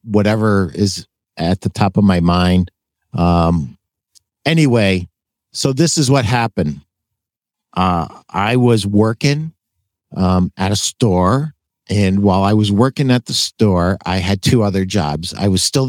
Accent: American